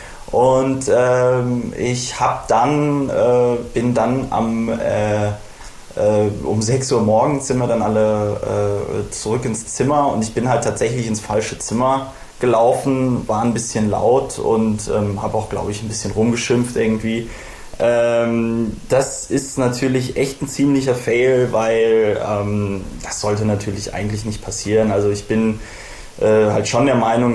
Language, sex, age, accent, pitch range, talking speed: German, male, 20-39, German, 105-120 Hz, 150 wpm